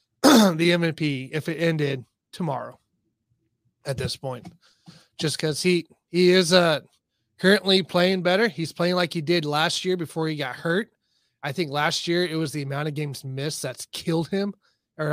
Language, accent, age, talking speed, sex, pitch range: English, American, 20-39, 175 wpm, male, 140-180 Hz